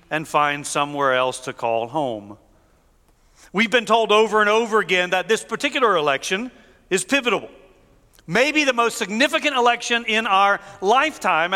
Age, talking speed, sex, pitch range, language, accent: 40-59, 145 wpm, male, 160-235 Hz, English, American